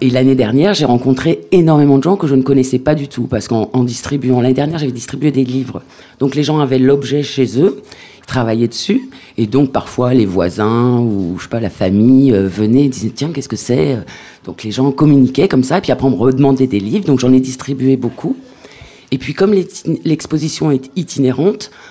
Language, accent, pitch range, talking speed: French, French, 105-140 Hz, 215 wpm